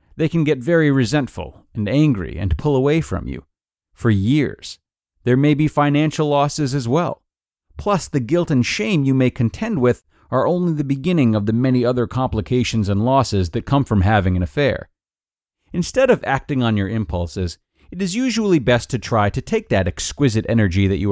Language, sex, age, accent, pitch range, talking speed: English, male, 30-49, American, 100-145 Hz, 190 wpm